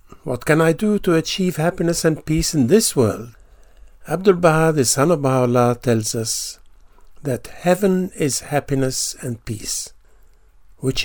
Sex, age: male, 50-69